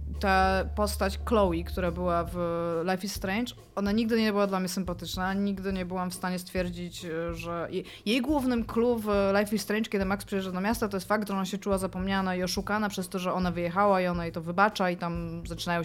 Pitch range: 170-215 Hz